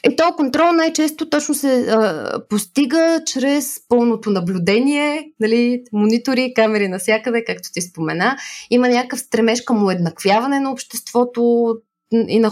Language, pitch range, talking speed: Bulgarian, 195-255 Hz, 135 wpm